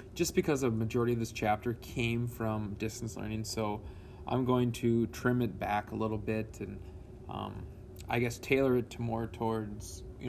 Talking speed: 180 wpm